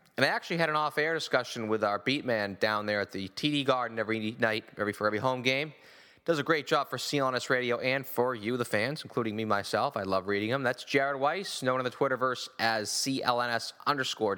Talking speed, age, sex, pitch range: 215 wpm, 20-39, male, 115-155 Hz